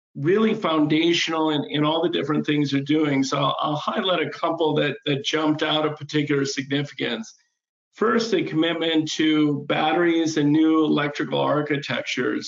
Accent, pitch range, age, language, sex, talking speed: American, 150-165 Hz, 50-69, English, male, 160 wpm